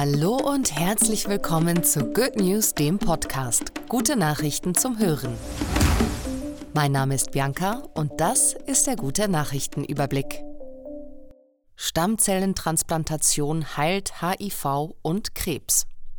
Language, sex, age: German, female, 30-49